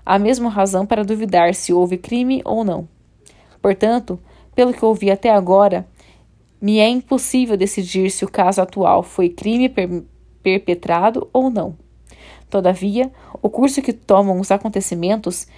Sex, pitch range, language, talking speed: female, 190-230 Hz, Portuguese, 140 wpm